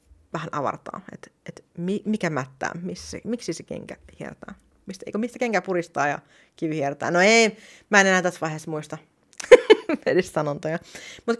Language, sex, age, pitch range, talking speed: Finnish, female, 30-49, 160-235 Hz, 160 wpm